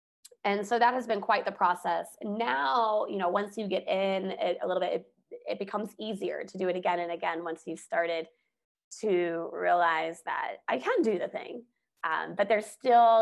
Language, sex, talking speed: English, female, 200 wpm